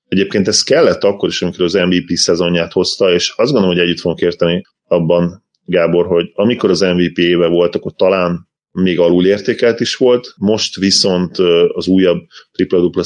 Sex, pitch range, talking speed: male, 85-95 Hz, 165 wpm